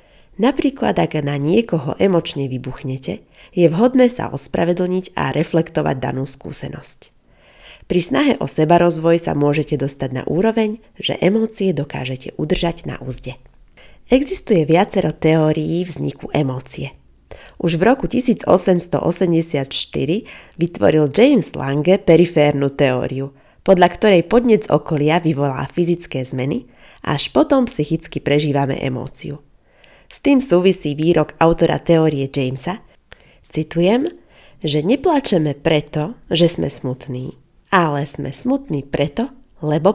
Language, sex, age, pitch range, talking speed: Slovak, female, 30-49, 145-185 Hz, 115 wpm